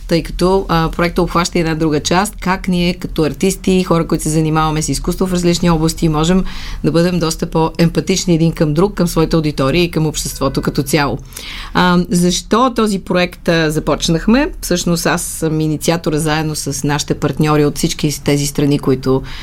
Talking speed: 170 wpm